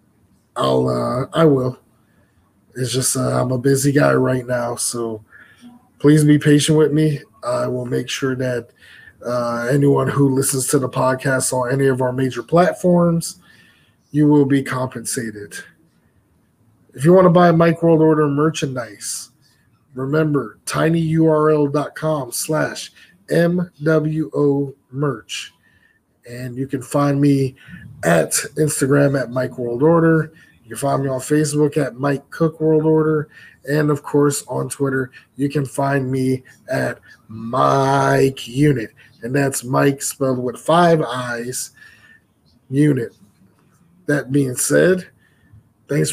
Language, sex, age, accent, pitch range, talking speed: English, male, 20-39, American, 125-155 Hz, 130 wpm